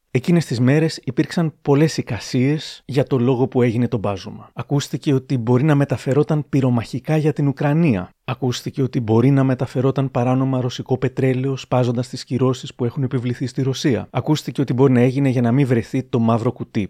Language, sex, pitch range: Greek, male, 105-130 Hz